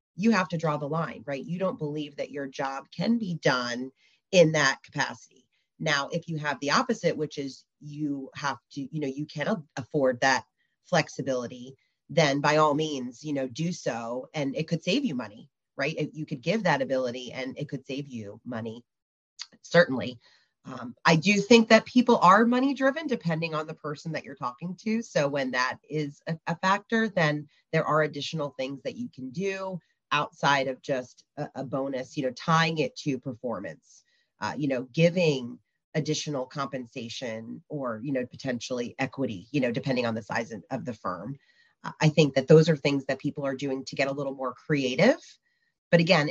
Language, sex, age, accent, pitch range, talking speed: English, female, 30-49, American, 135-165 Hz, 190 wpm